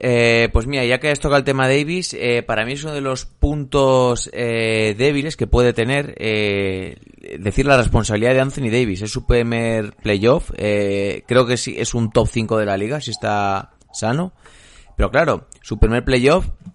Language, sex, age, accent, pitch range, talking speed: Spanish, male, 30-49, Spanish, 100-120 Hz, 200 wpm